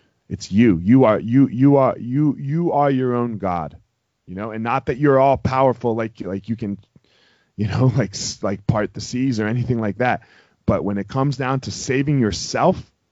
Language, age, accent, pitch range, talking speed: English, 30-49, American, 105-135 Hz, 200 wpm